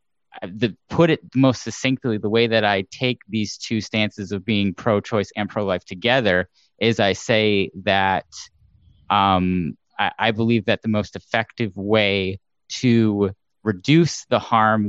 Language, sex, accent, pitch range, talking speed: English, male, American, 100-115 Hz, 140 wpm